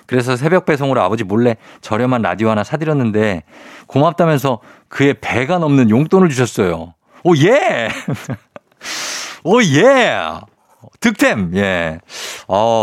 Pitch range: 100-155 Hz